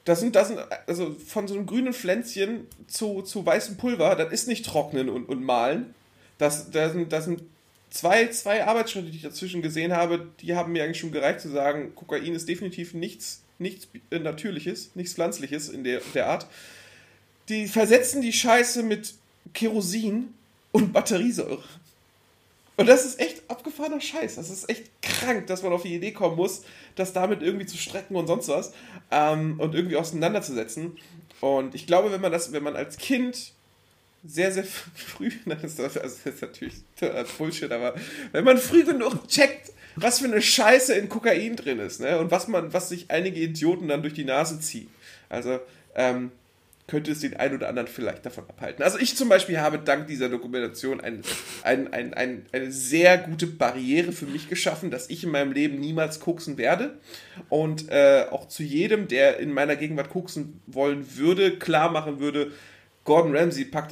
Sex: male